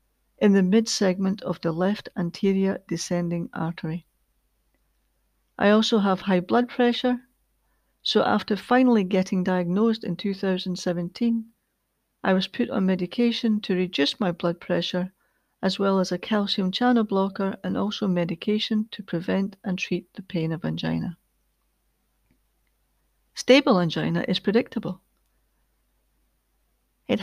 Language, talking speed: English, 120 wpm